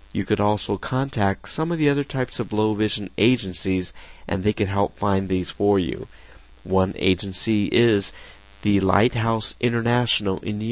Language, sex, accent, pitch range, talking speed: English, male, American, 95-115 Hz, 160 wpm